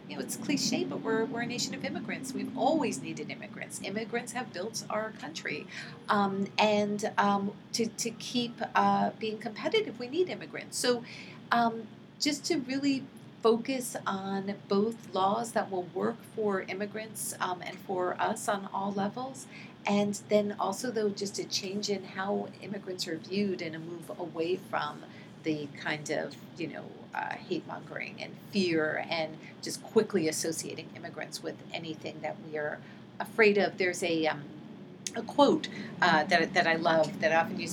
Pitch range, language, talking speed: 165-215 Hz, English, 170 wpm